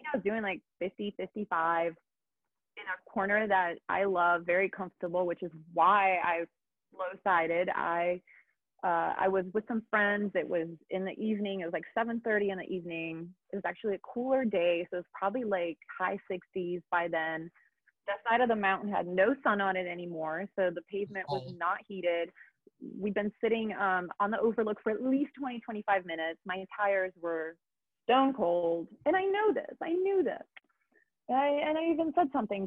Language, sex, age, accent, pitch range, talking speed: English, female, 30-49, American, 185-265 Hz, 185 wpm